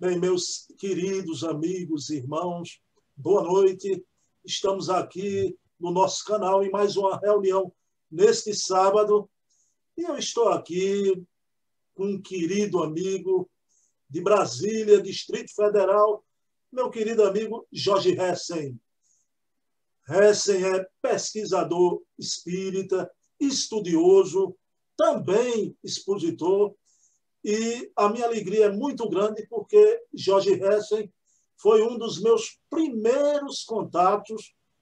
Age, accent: 50-69, Brazilian